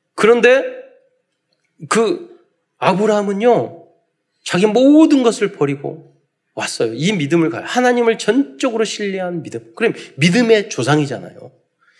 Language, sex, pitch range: Korean, male, 155-230 Hz